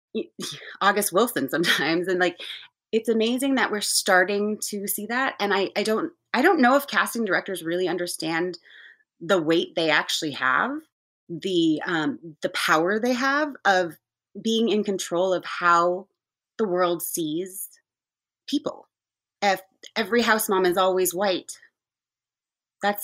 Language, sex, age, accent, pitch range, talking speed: English, female, 30-49, American, 180-250 Hz, 140 wpm